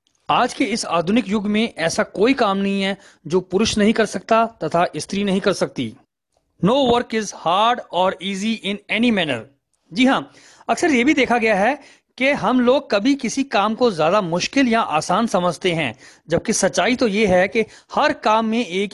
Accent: native